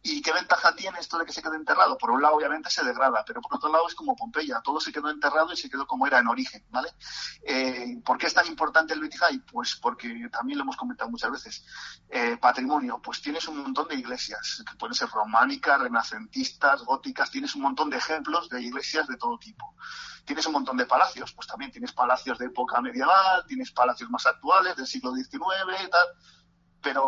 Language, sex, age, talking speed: Spanish, male, 40-59, 215 wpm